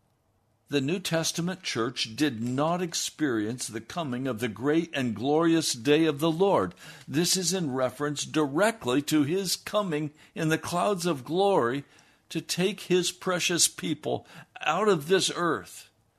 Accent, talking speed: American, 150 wpm